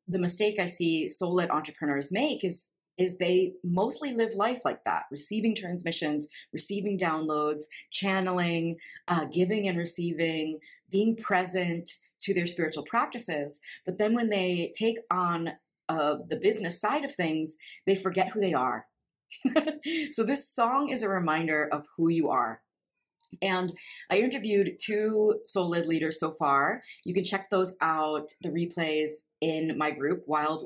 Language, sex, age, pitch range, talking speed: English, female, 30-49, 155-195 Hz, 150 wpm